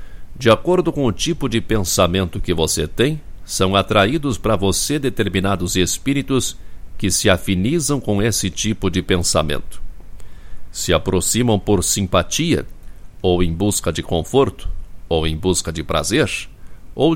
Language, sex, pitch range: Portuguese, male, 85-115 Hz